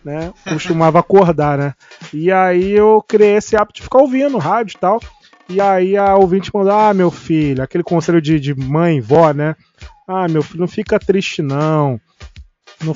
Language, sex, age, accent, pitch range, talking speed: Portuguese, male, 20-39, Brazilian, 145-185 Hz, 190 wpm